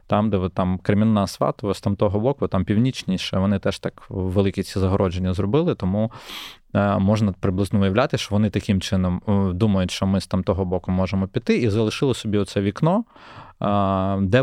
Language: Ukrainian